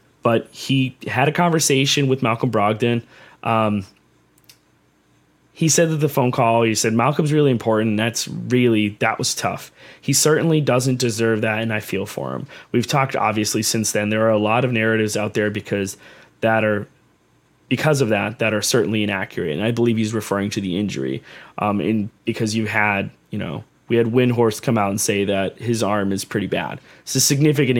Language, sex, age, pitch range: English, male, 20-39, 105-135 Hz